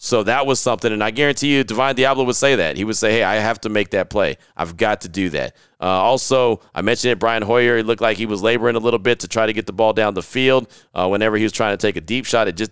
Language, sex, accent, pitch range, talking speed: English, male, American, 100-120 Hz, 305 wpm